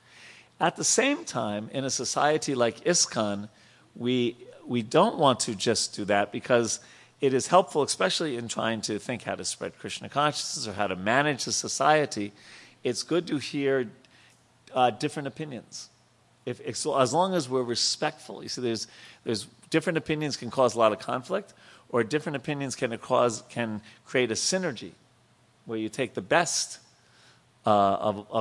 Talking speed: 170 wpm